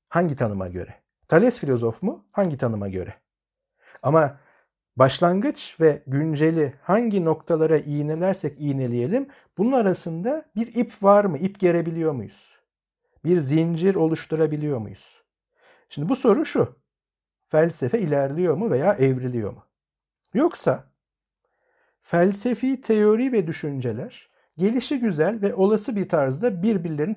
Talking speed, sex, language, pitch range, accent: 115 wpm, male, Turkish, 140-215 Hz, native